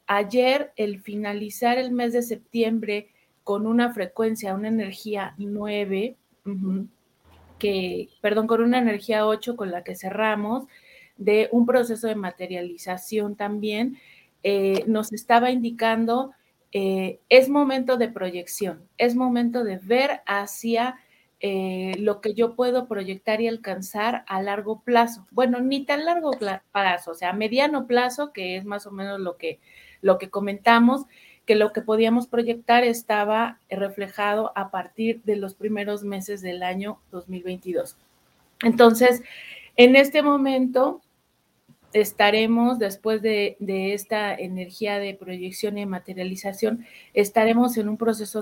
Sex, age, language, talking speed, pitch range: female, 30-49, Spanish, 135 wpm, 195-235 Hz